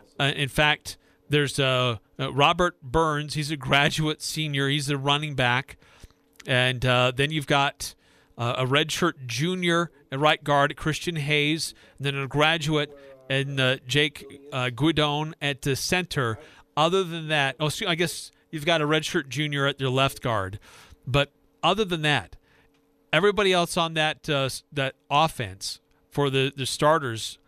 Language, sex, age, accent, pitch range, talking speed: English, male, 40-59, American, 130-155 Hz, 160 wpm